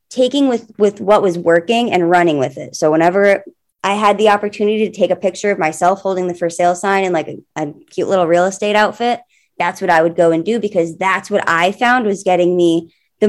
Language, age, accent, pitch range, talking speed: English, 20-39, American, 165-215 Hz, 235 wpm